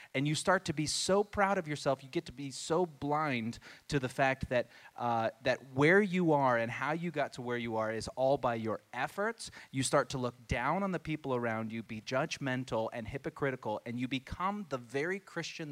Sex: male